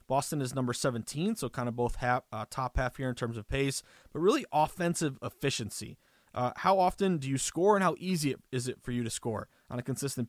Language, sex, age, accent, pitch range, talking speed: English, male, 30-49, American, 125-175 Hz, 220 wpm